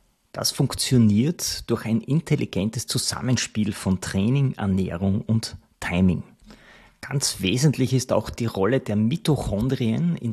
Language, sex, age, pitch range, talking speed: German, male, 30-49, 100-125 Hz, 115 wpm